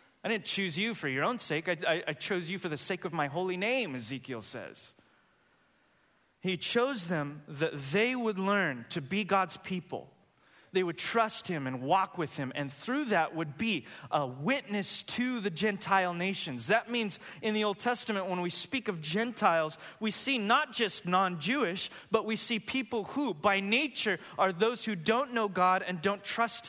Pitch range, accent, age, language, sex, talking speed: 160-230 Hz, American, 30-49, English, male, 190 wpm